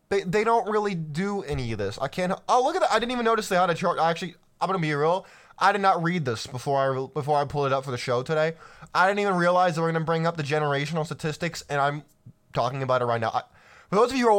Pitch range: 150-205 Hz